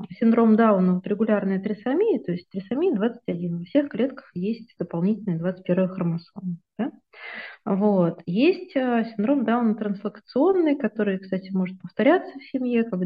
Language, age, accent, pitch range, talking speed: Russian, 20-39, native, 180-230 Hz, 125 wpm